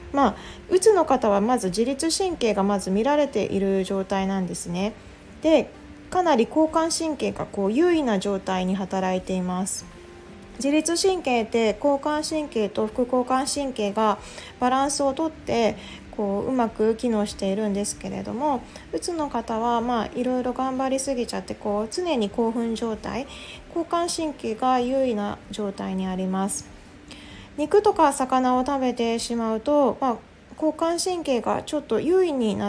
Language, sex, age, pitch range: Japanese, female, 20-39, 210-295 Hz